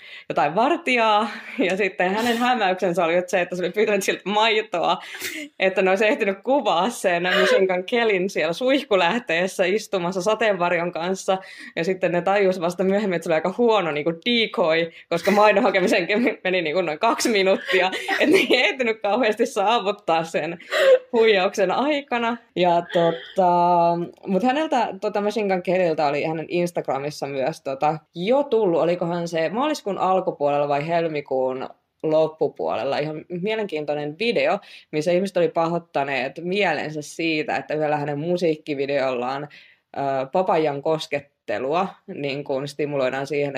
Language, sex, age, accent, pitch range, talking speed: Finnish, female, 20-39, native, 155-210 Hz, 135 wpm